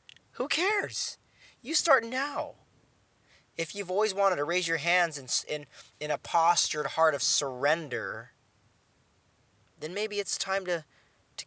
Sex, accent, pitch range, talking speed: male, American, 125-155 Hz, 140 wpm